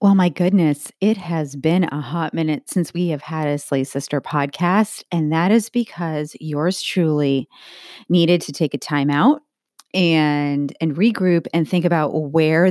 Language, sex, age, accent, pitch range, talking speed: English, female, 30-49, American, 145-180 Hz, 170 wpm